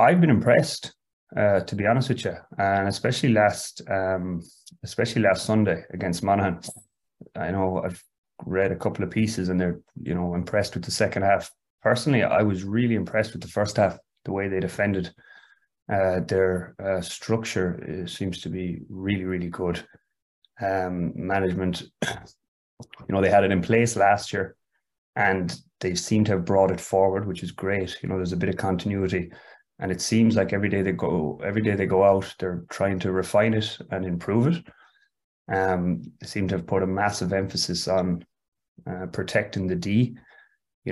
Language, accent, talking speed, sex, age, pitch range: English, Irish, 180 wpm, male, 30-49, 90-100 Hz